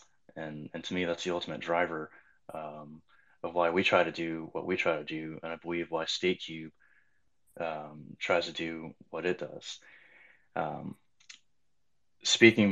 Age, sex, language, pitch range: 20-39, male, English, 85-95 Hz